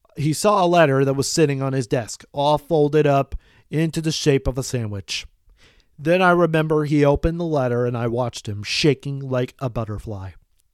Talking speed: 190 wpm